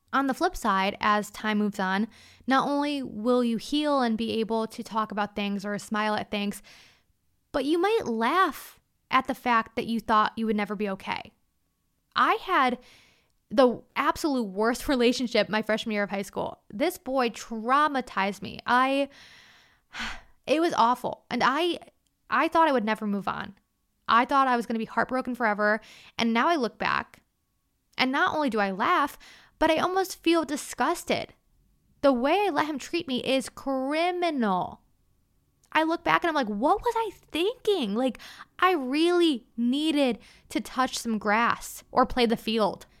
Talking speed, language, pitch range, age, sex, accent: 175 wpm, English, 220-295 Hz, 20-39, female, American